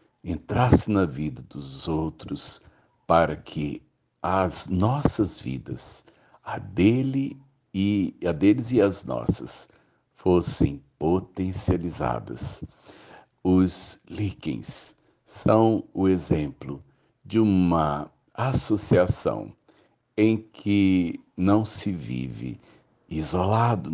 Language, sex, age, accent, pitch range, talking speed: Portuguese, male, 60-79, Brazilian, 80-105 Hz, 80 wpm